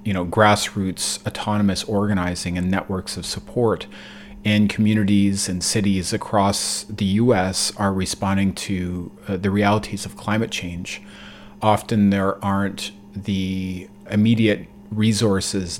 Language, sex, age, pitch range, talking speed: English, male, 30-49, 95-105 Hz, 120 wpm